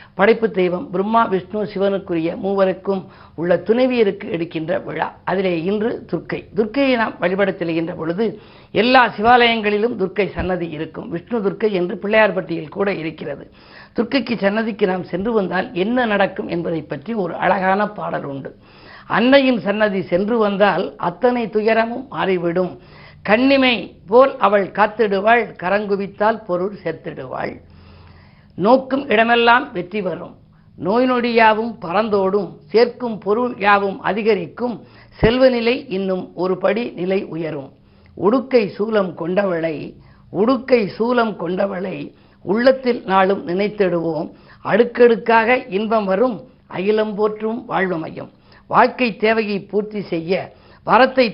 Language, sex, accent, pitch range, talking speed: Tamil, female, native, 180-225 Hz, 110 wpm